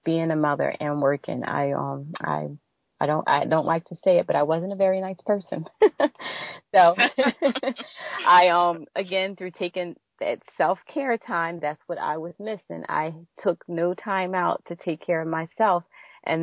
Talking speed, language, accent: 180 wpm, English, American